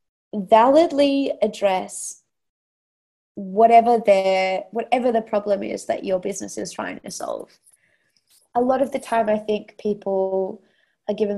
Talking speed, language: 130 wpm, English